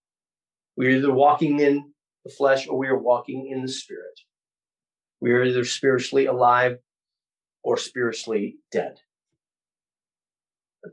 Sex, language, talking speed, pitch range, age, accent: male, English, 125 wpm, 135-200 Hz, 40-59, American